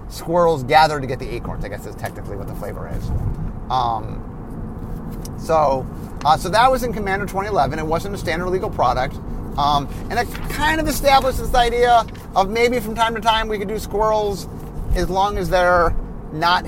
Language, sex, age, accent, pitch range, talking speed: English, male, 30-49, American, 150-215 Hz, 185 wpm